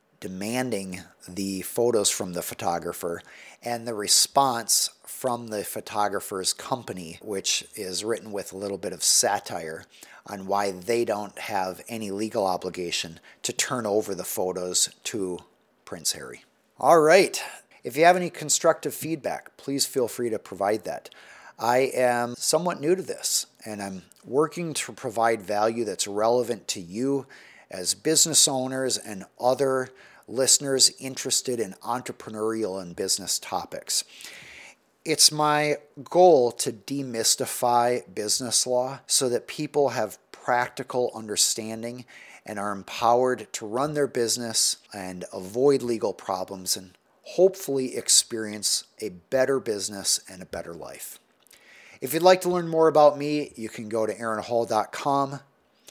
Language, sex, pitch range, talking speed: English, male, 105-135 Hz, 135 wpm